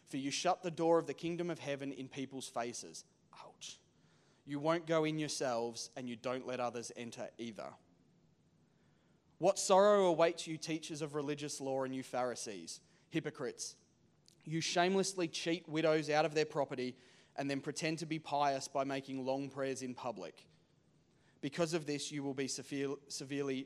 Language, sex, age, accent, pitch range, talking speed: English, male, 20-39, Australian, 125-160 Hz, 165 wpm